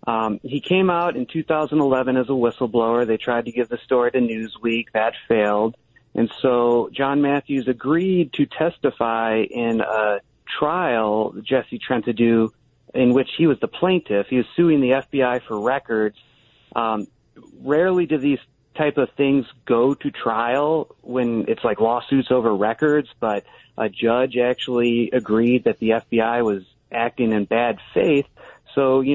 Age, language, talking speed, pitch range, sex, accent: 30-49, English, 160 wpm, 115-145 Hz, male, American